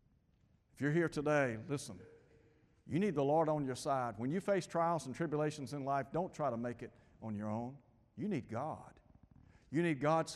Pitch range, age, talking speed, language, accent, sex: 120-165 Hz, 60-79, 195 wpm, English, American, male